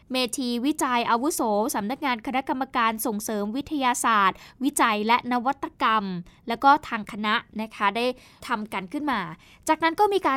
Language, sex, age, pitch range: Thai, female, 10-29, 220-285 Hz